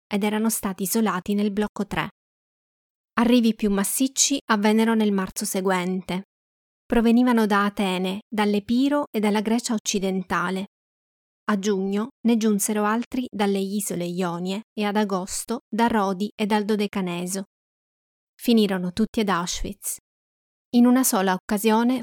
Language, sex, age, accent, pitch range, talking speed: Italian, female, 20-39, native, 195-225 Hz, 125 wpm